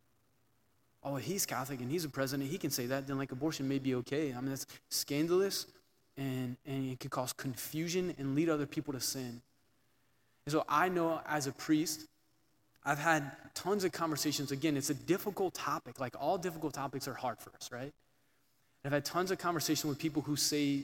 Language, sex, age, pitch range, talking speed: English, male, 20-39, 130-155 Hz, 195 wpm